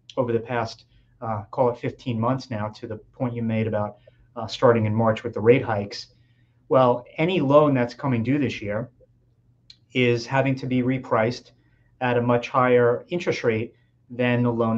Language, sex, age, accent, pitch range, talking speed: English, male, 30-49, American, 120-135 Hz, 185 wpm